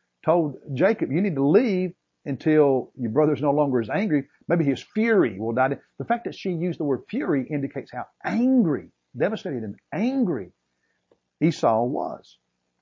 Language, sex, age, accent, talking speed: English, male, 50-69, American, 165 wpm